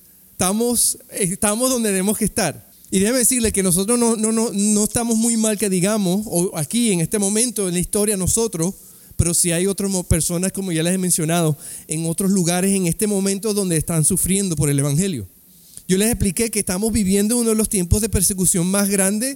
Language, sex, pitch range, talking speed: Spanish, male, 185-235 Hz, 205 wpm